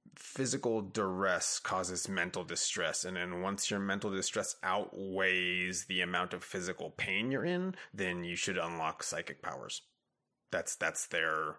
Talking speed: 145 wpm